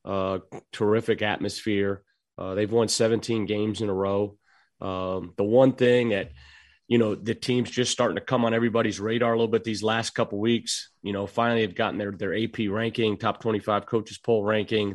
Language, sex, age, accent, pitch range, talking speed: English, male, 30-49, American, 105-120 Hz, 200 wpm